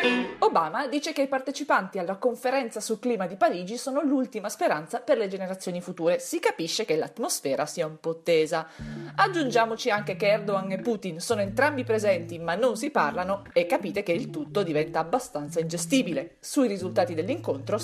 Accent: native